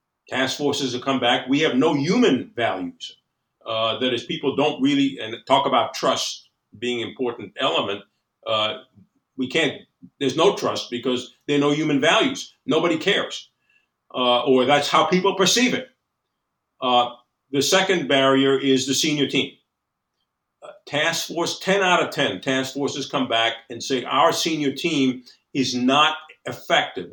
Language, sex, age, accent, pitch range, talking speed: English, male, 50-69, American, 125-155 Hz, 160 wpm